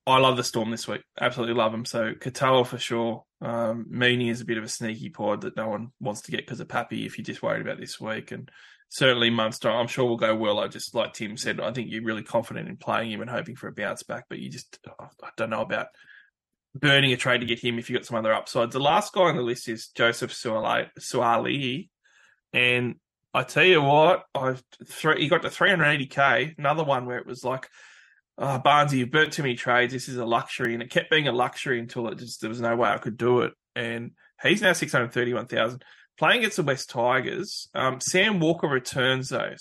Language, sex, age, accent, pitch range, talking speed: English, male, 20-39, Australian, 120-140 Hz, 235 wpm